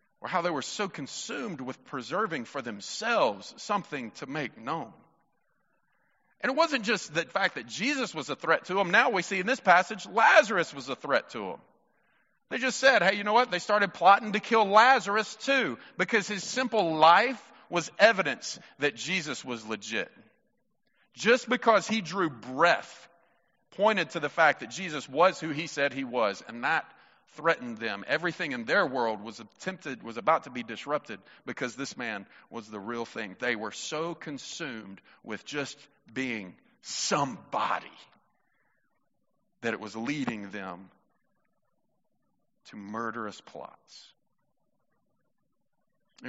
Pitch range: 130-205 Hz